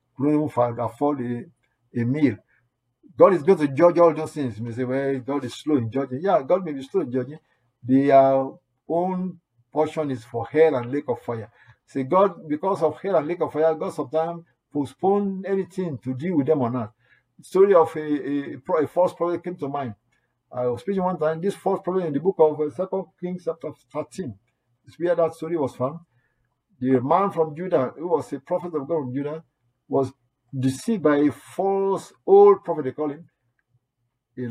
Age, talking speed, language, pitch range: 50-69, 200 wpm, English, 125-165 Hz